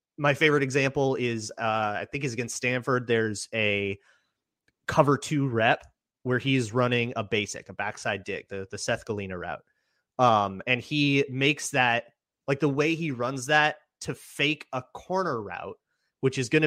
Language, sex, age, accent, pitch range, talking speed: English, male, 30-49, American, 115-140 Hz, 170 wpm